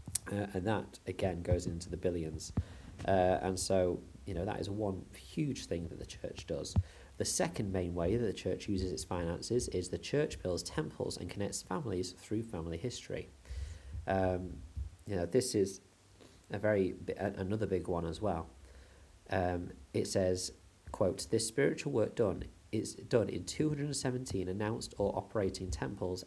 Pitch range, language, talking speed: 85-100 Hz, English, 170 wpm